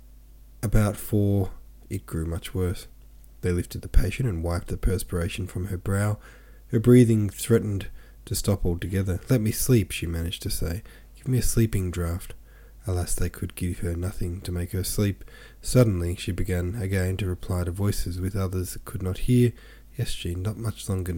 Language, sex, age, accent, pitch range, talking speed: English, male, 20-39, Australian, 90-110 Hz, 180 wpm